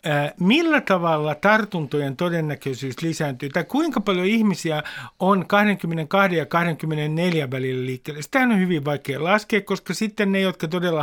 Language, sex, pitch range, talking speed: Finnish, male, 140-190 Hz, 135 wpm